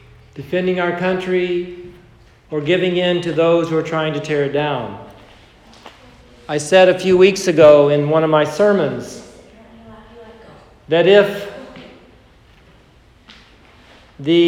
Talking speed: 120 wpm